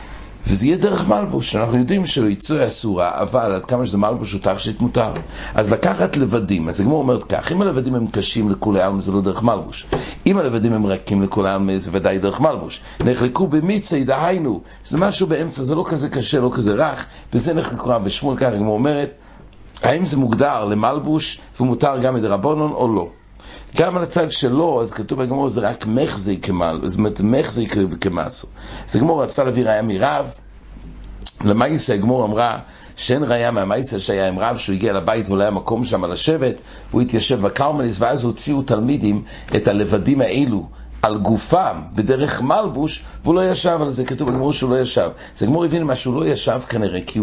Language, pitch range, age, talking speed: English, 105-145 Hz, 60-79, 170 wpm